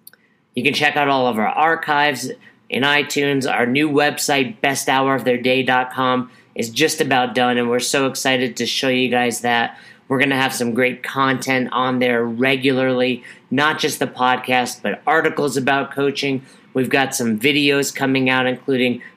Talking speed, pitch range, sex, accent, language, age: 165 wpm, 125-145 Hz, male, American, English, 40-59